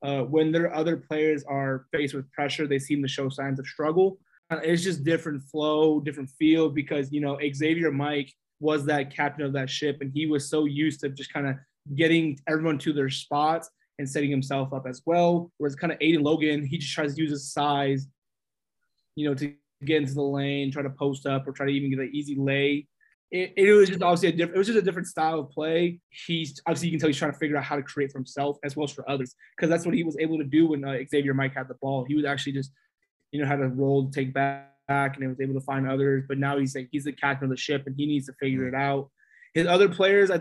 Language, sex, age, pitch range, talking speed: English, male, 20-39, 140-160 Hz, 260 wpm